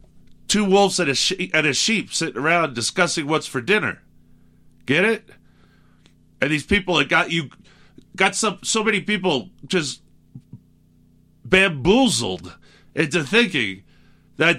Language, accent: English, American